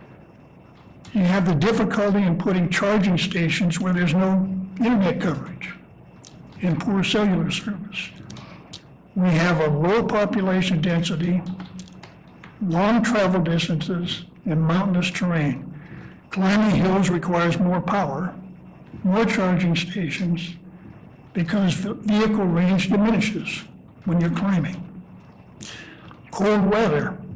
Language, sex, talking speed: English, male, 105 wpm